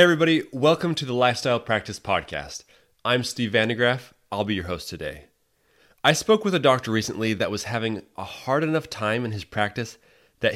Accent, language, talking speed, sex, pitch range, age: American, English, 190 wpm, male, 95-120 Hz, 30-49